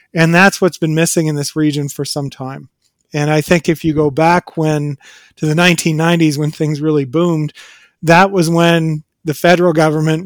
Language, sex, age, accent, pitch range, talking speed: English, male, 40-59, American, 150-170 Hz, 185 wpm